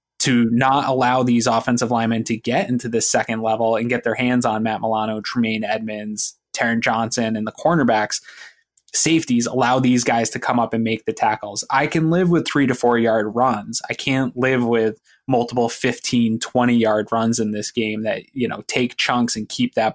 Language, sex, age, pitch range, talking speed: English, male, 20-39, 115-130 Hz, 200 wpm